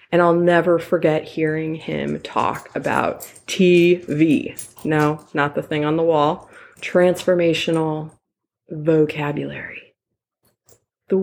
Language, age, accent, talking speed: English, 20-39, American, 100 wpm